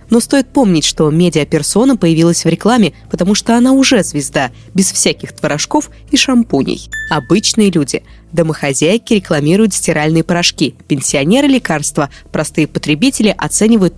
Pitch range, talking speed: 160-225 Hz, 125 wpm